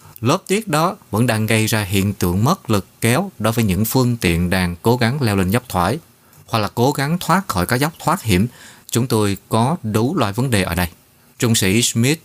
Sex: male